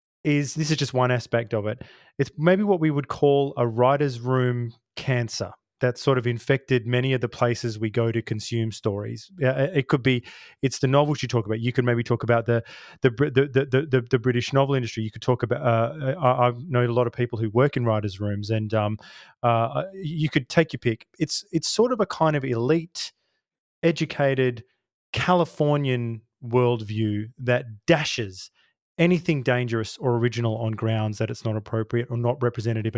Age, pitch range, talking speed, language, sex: 20-39, 120-150 Hz, 190 wpm, English, male